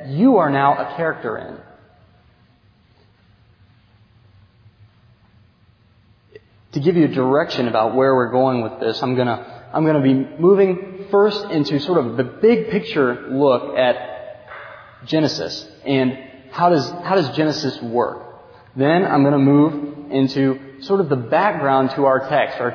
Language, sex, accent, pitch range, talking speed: English, male, American, 115-155 Hz, 140 wpm